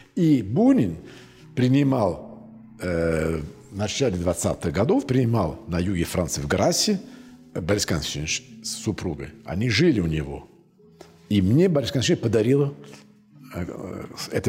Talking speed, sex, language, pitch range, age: 115 wpm, male, Russian, 85-125 Hz, 50-69